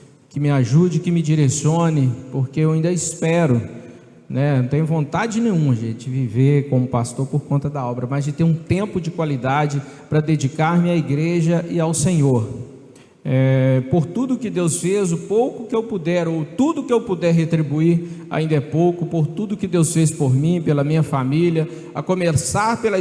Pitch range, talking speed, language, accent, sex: 145-175 Hz, 185 wpm, Portuguese, Brazilian, male